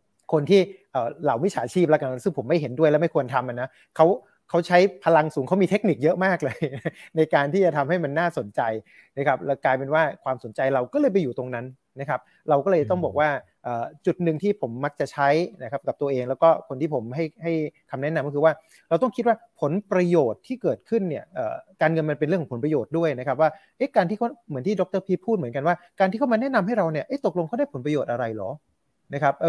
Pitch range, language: 140-195 Hz, Thai